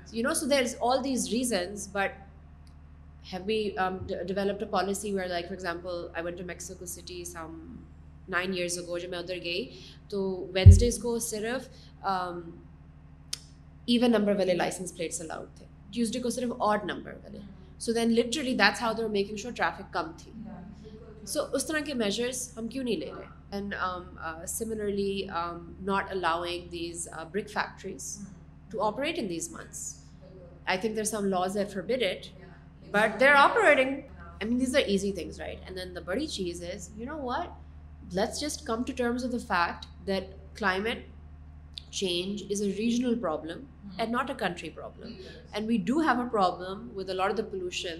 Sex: female